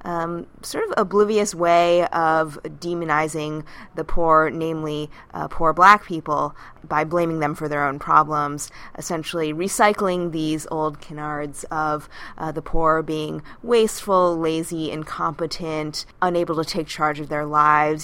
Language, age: English, 20-39